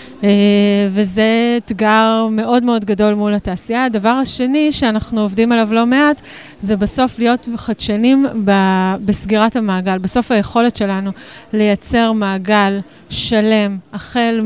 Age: 30-49